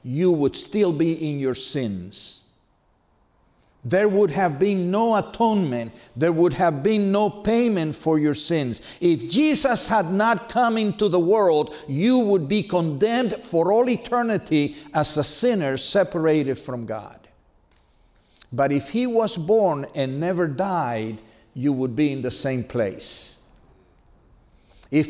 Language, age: English, 50-69